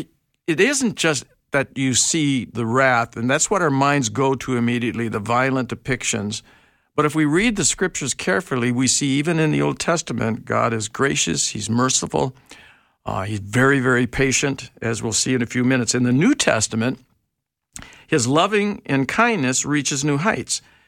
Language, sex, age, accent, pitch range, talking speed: English, male, 60-79, American, 120-155 Hz, 175 wpm